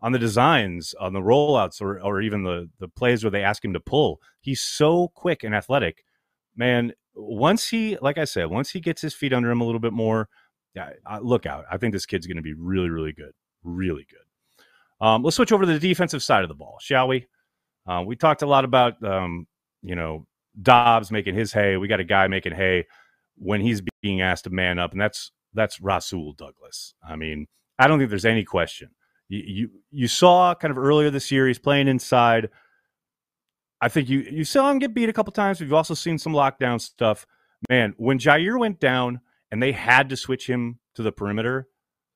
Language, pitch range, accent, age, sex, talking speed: English, 100-145 Hz, American, 30-49, male, 215 wpm